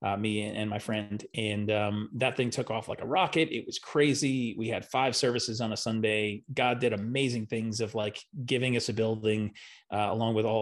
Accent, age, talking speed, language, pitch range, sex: American, 30-49, 215 wpm, English, 110-135 Hz, male